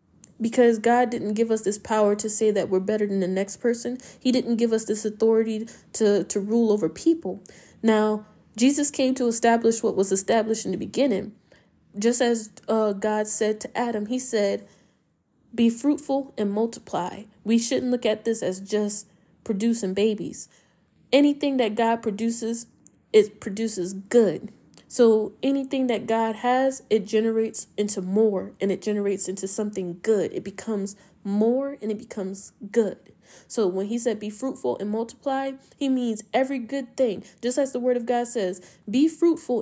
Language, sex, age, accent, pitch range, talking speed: English, female, 10-29, American, 205-245 Hz, 170 wpm